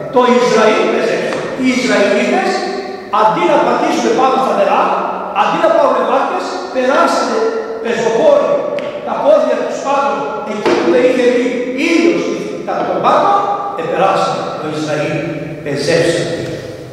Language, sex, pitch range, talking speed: Greek, male, 205-295 Hz, 115 wpm